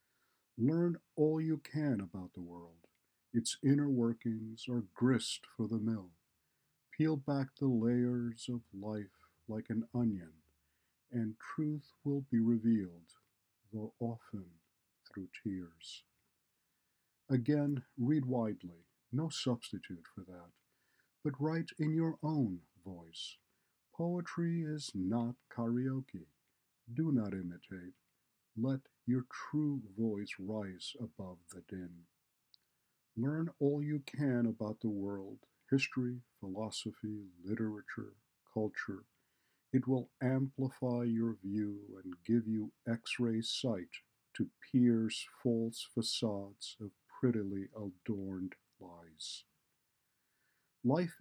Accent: American